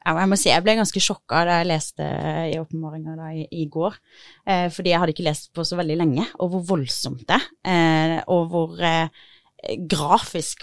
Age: 20-39